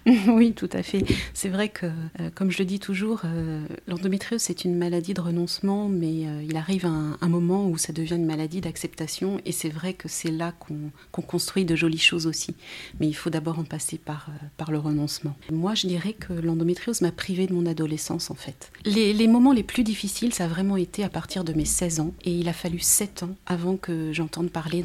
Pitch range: 160-195 Hz